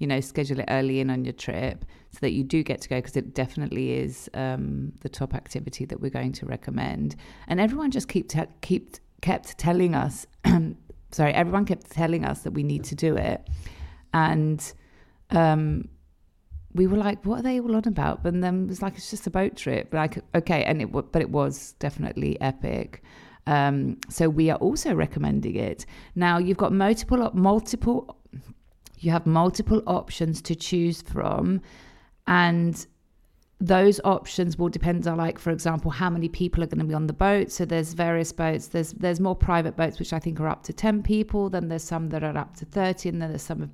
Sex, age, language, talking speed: female, 30-49, Greek, 205 wpm